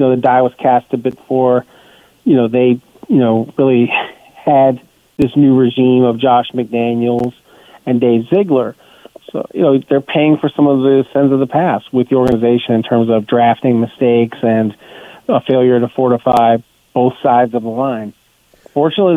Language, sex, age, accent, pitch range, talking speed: English, male, 40-59, American, 115-130 Hz, 180 wpm